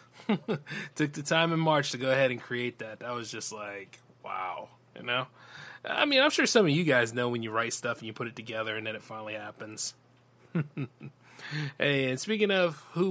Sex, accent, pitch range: male, American, 125-170 Hz